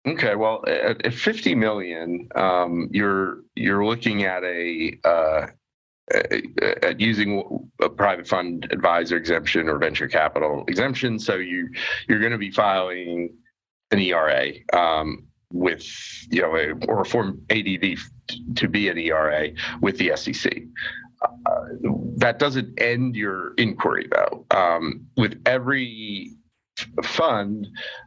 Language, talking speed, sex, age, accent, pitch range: English, 125 wpm, male, 40-59, American, 85-120 Hz